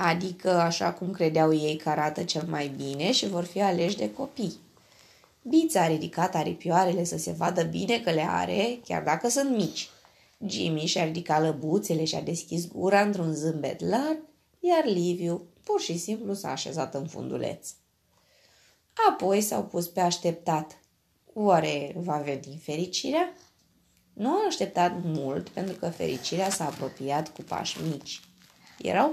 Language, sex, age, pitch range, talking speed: Romanian, female, 20-39, 155-200 Hz, 150 wpm